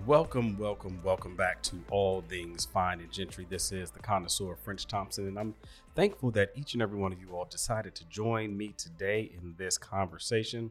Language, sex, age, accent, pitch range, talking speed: English, male, 40-59, American, 90-115 Hz, 195 wpm